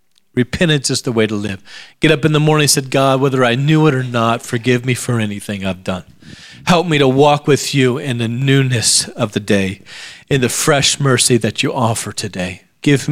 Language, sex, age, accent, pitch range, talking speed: English, male, 40-59, American, 115-150 Hz, 210 wpm